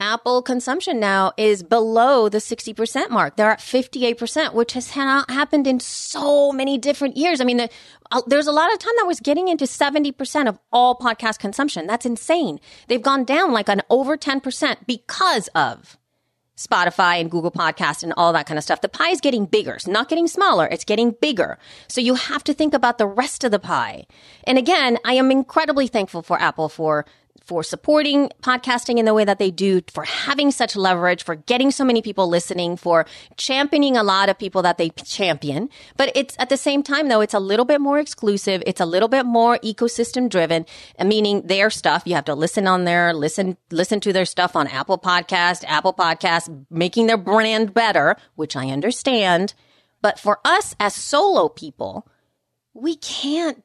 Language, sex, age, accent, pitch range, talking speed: English, female, 30-49, American, 185-275 Hz, 190 wpm